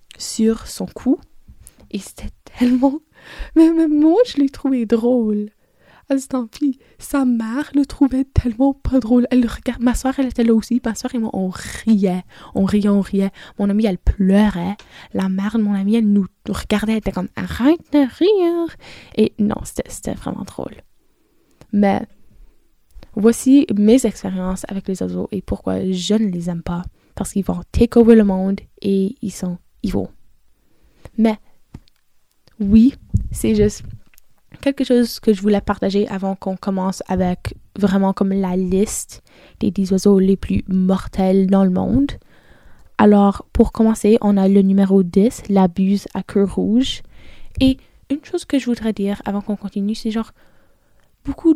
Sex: female